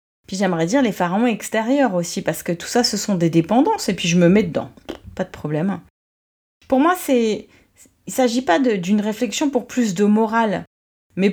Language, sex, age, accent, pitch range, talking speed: French, female, 30-49, French, 180-245 Hz, 190 wpm